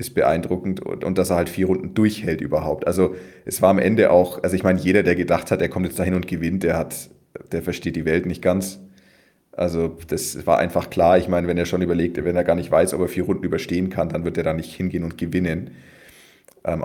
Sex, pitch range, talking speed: male, 80-95 Hz, 245 wpm